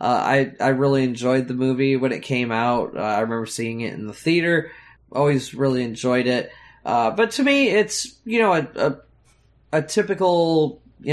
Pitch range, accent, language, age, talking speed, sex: 130-160 Hz, American, English, 20-39, 185 wpm, male